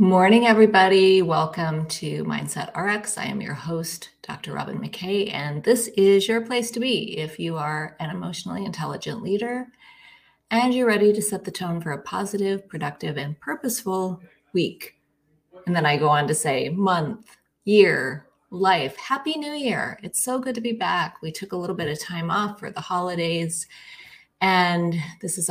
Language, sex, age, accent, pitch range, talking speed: English, female, 30-49, American, 165-205 Hz, 175 wpm